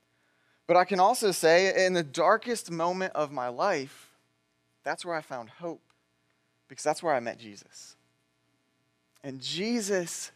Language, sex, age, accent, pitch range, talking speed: English, male, 20-39, American, 130-185 Hz, 145 wpm